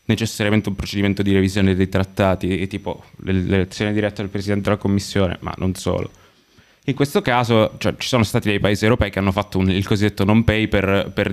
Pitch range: 100-115 Hz